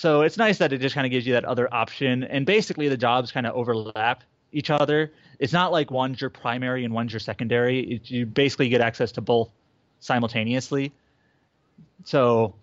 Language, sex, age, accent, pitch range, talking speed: English, male, 30-49, American, 120-145 Hz, 195 wpm